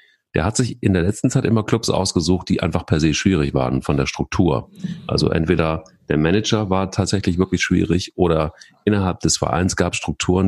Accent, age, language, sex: German, 40-59, German, male